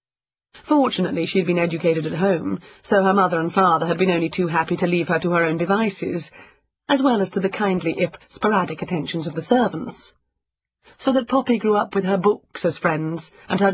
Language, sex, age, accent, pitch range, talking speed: English, female, 40-59, British, 175-230 Hz, 210 wpm